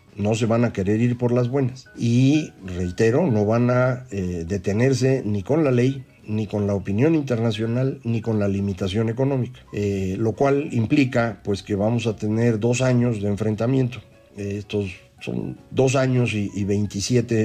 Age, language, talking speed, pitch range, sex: 50-69, Spanish, 175 wpm, 105-130 Hz, male